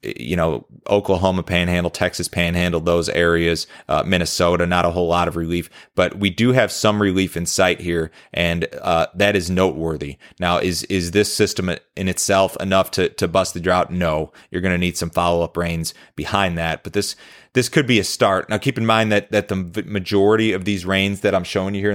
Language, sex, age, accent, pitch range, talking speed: English, male, 30-49, American, 85-100 Hz, 210 wpm